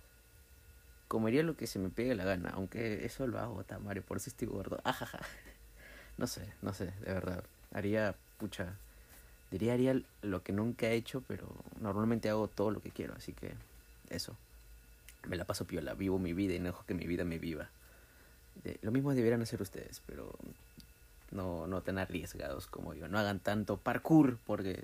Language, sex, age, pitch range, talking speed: Spanish, male, 30-49, 90-110 Hz, 185 wpm